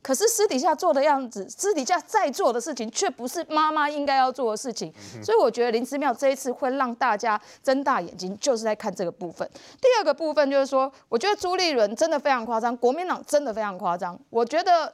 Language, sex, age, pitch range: Chinese, female, 30-49, 230-350 Hz